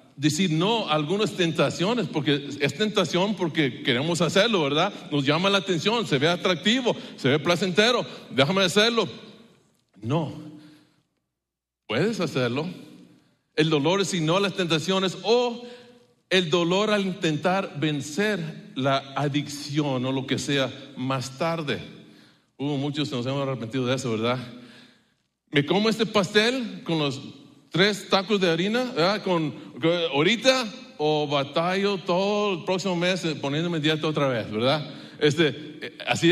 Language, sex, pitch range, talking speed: English, male, 145-195 Hz, 140 wpm